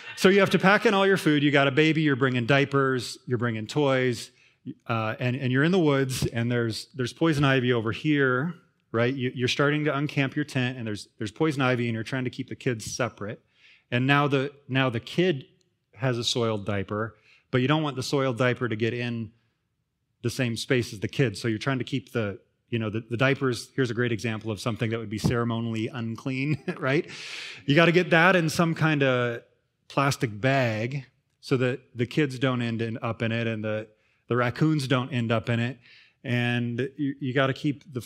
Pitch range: 115-140 Hz